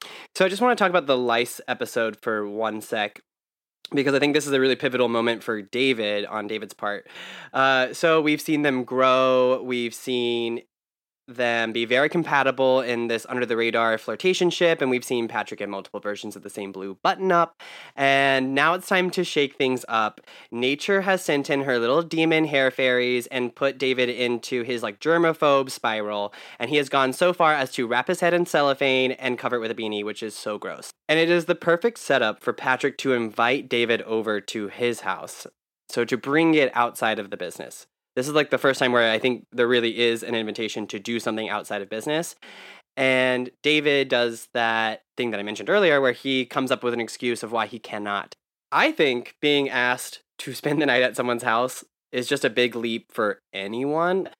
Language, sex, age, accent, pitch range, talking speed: English, male, 20-39, American, 115-140 Hz, 205 wpm